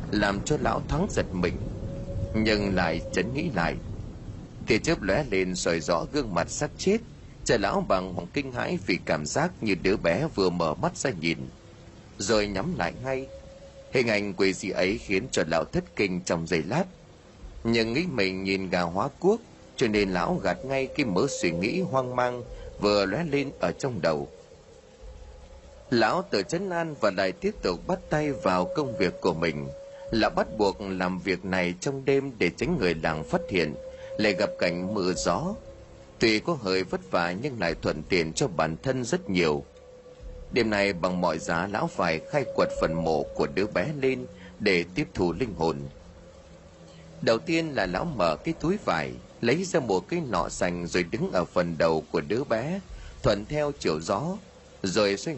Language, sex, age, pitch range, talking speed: Vietnamese, male, 30-49, 90-155 Hz, 190 wpm